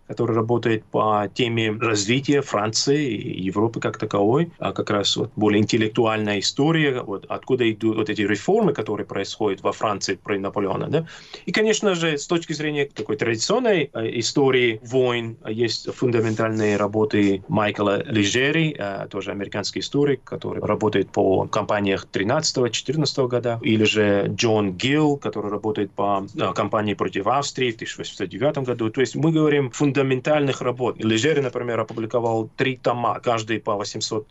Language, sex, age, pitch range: Russian, male, 30-49, 110-145 Hz